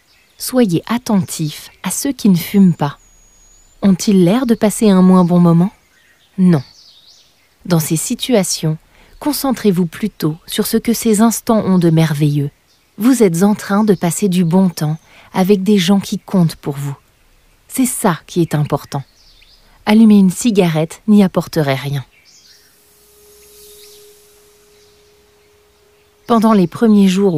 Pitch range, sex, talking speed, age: 150-215 Hz, female, 135 wpm, 30-49